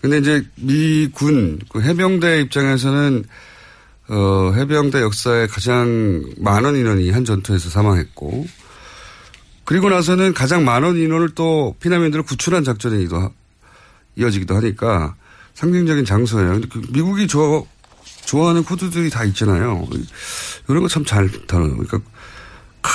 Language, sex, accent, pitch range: Korean, male, native, 100-150 Hz